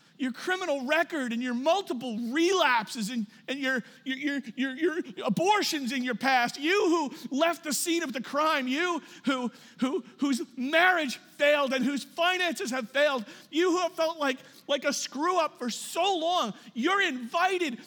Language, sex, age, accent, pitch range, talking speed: English, male, 40-59, American, 220-325 Hz, 170 wpm